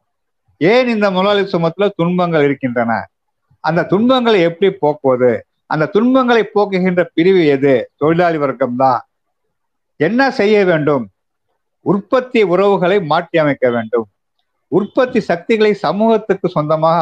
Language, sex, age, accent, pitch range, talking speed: Tamil, male, 50-69, native, 145-205 Hz, 100 wpm